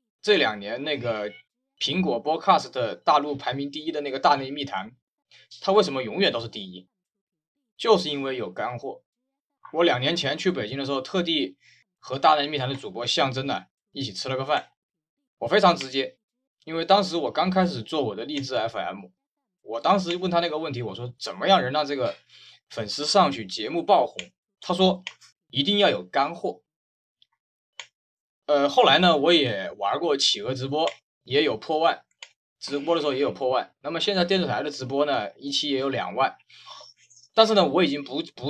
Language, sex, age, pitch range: Chinese, male, 20-39, 130-185 Hz